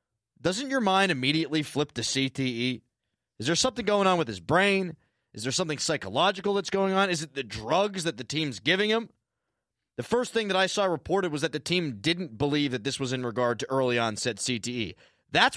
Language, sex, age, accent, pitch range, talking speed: English, male, 30-49, American, 130-180 Hz, 210 wpm